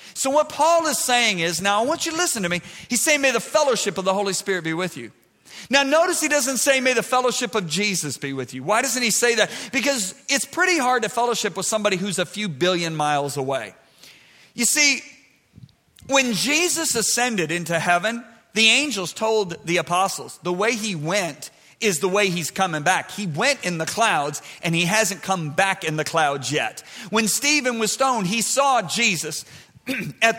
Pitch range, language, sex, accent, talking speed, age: 190-270 Hz, English, male, American, 200 wpm, 40-59